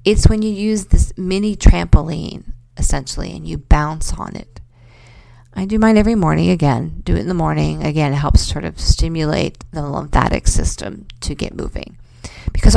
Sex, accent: female, American